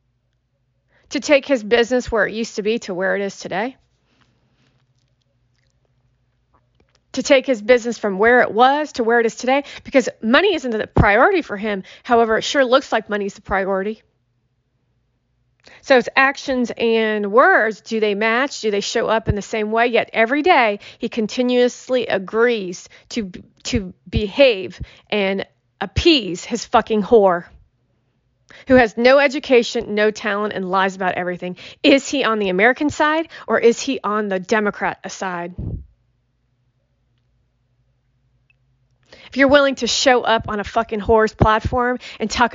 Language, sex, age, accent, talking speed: English, female, 40-59, American, 155 wpm